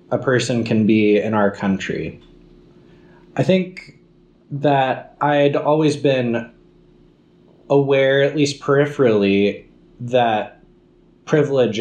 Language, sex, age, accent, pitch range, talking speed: English, male, 20-39, American, 110-145 Hz, 95 wpm